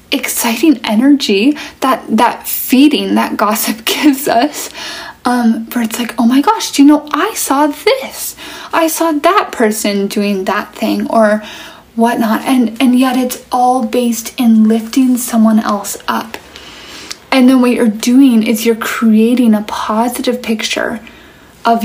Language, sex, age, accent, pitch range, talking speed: English, female, 10-29, American, 220-255 Hz, 150 wpm